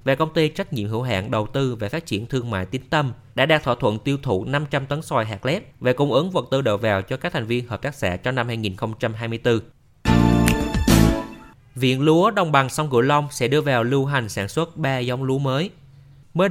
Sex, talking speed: male, 230 wpm